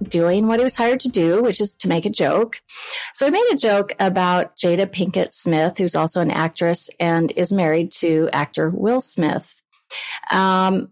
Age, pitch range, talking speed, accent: 30-49, 170-215 Hz, 185 wpm, American